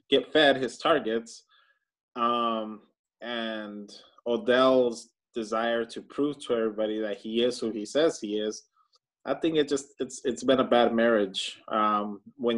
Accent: American